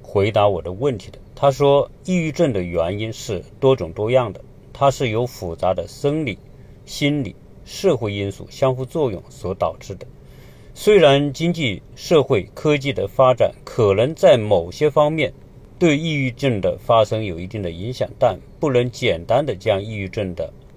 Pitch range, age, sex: 100-140 Hz, 50-69, male